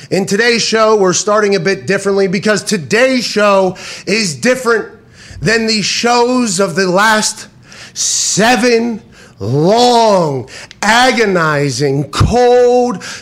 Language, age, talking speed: English, 30-49, 105 wpm